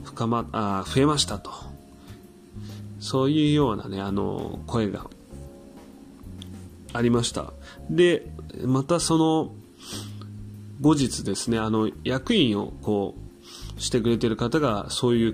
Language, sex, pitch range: Japanese, male, 100-120 Hz